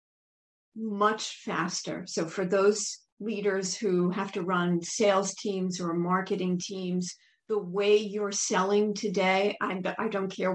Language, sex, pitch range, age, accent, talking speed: English, female, 180-205 Hz, 50-69, American, 130 wpm